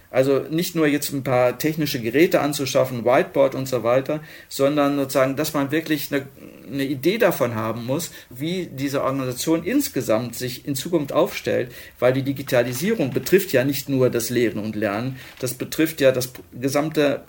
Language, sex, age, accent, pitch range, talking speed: German, male, 50-69, German, 130-150 Hz, 165 wpm